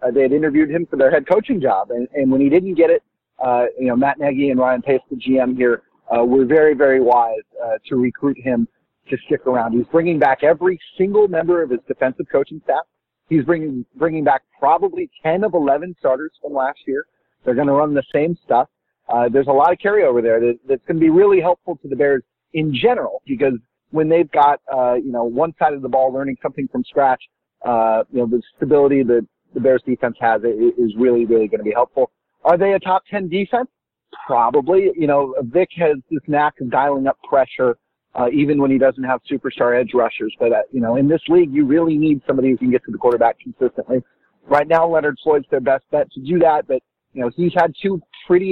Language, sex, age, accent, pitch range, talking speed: English, male, 40-59, American, 130-170 Hz, 225 wpm